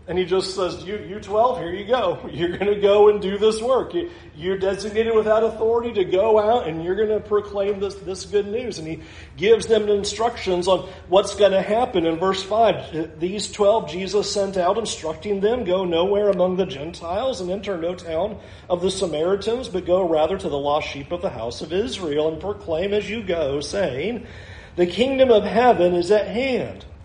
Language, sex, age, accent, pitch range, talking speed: English, male, 40-59, American, 170-210 Hz, 205 wpm